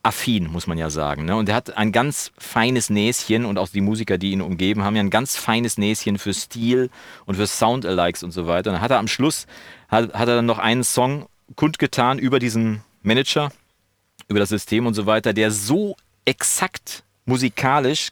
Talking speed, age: 185 wpm, 40-59